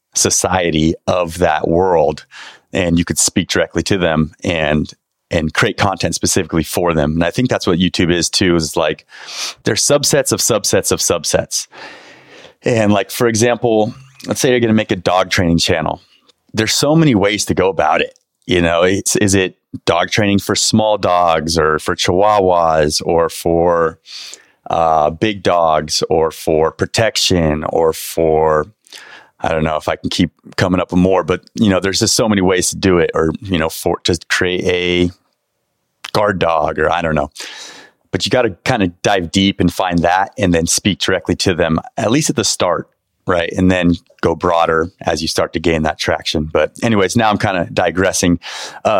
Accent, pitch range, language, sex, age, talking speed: American, 85-105 Hz, English, male, 30-49, 190 wpm